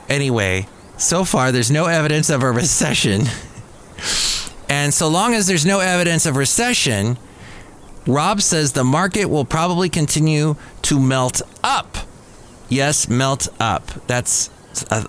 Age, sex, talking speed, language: 30-49, male, 130 wpm, English